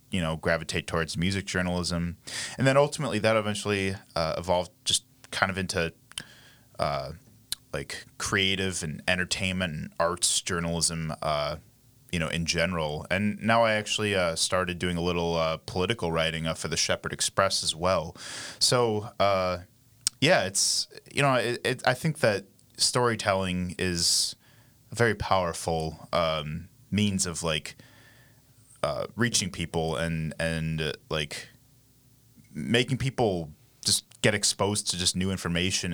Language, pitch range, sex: English, 85-115 Hz, male